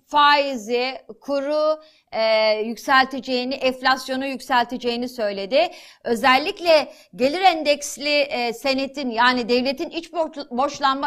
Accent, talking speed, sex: native, 85 wpm, female